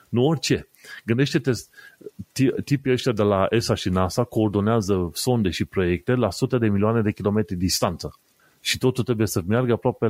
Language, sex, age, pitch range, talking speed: Romanian, male, 30-49, 95-120 Hz, 160 wpm